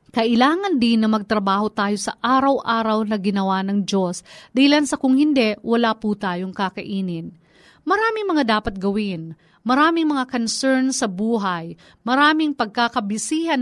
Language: Filipino